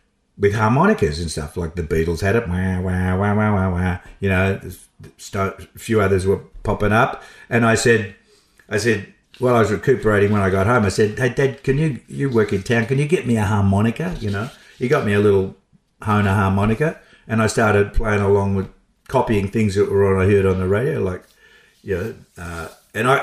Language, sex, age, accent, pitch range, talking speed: English, male, 50-69, Australian, 100-120 Hz, 215 wpm